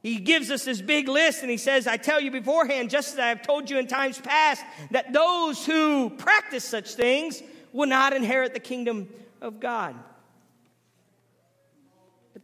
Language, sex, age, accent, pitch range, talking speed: English, male, 40-59, American, 230-275 Hz, 175 wpm